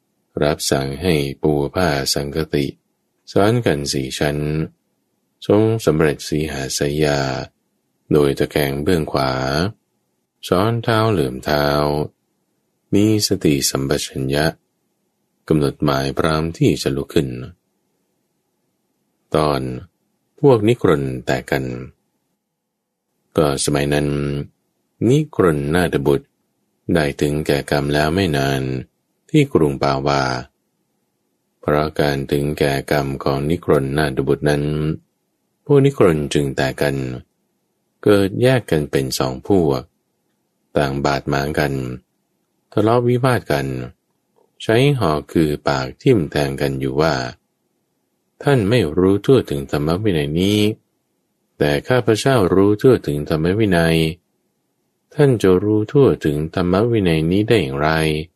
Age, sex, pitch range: 20-39, male, 70-90 Hz